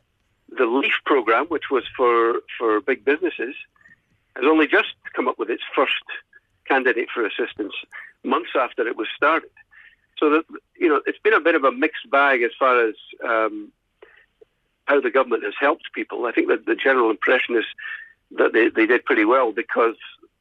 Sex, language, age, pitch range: male, English, 50-69, 325-425 Hz